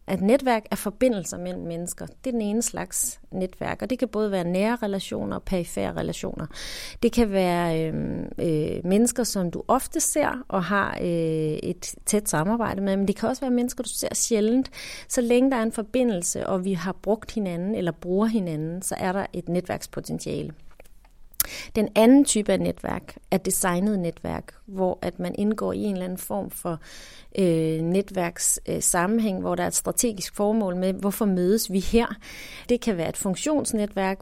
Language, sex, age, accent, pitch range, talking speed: Danish, female, 30-49, native, 175-220 Hz, 180 wpm